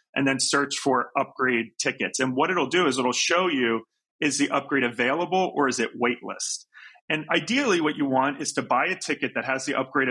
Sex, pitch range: male, 125-150 Hz